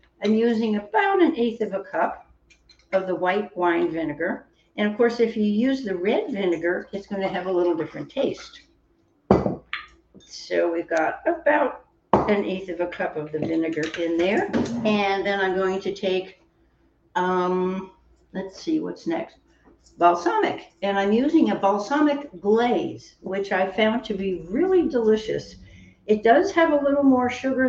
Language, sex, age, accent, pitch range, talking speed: English, female, 60-79, American, 185-235 Hz, 165 wpm